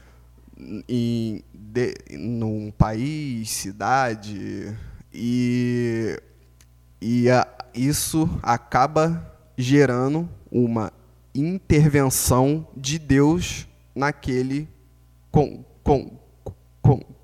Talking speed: 65 wpm